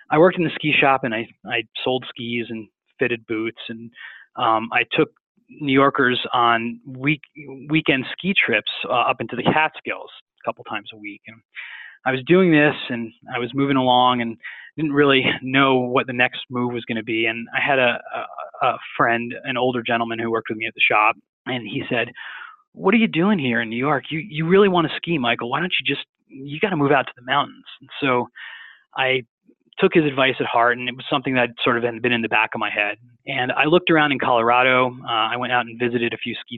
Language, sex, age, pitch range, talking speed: English, male, 20-39, 115-145 Hz, 235 wpm